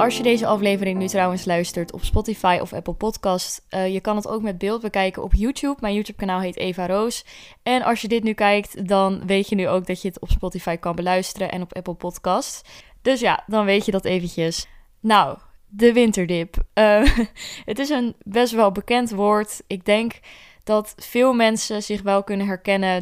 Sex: female